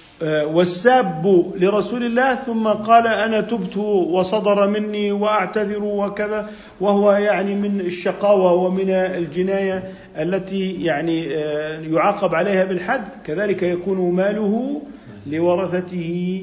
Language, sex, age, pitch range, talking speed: Arabic, male, 50-69, 165-200 Hz, 95 wpm